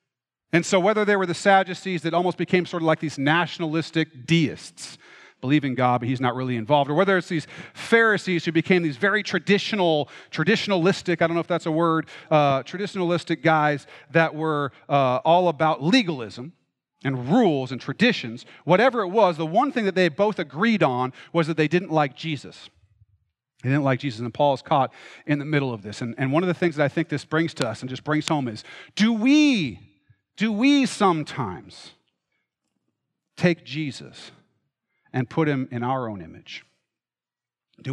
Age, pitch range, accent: 40-59, 125-170 Hz, American